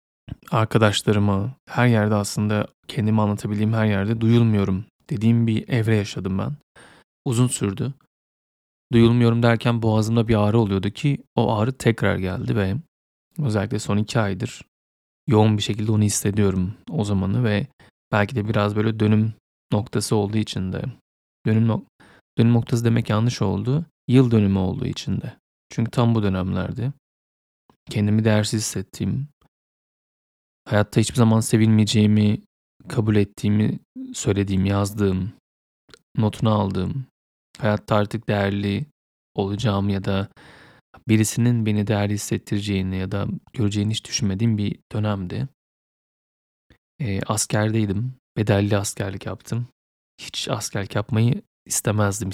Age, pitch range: 30-49, 100-115 Hz